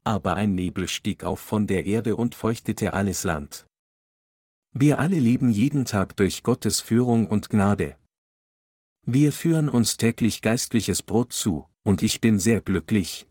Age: 50-69